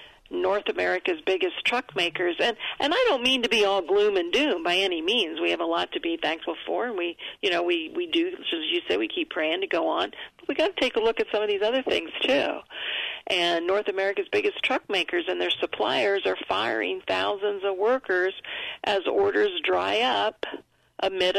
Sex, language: female, English